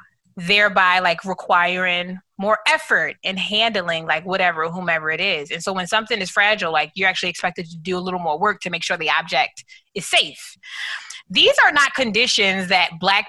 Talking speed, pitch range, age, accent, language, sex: 185 wpm, 180-230 Hz, 20-39, American, English, female